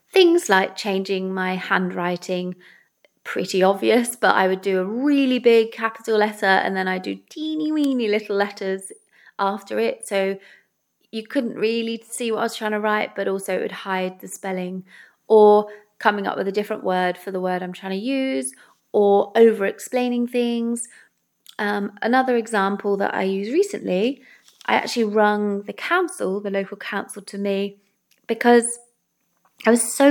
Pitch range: 195-230 Hz